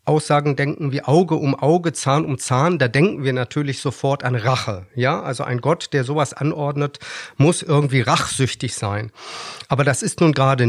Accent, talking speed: German, 180 wpm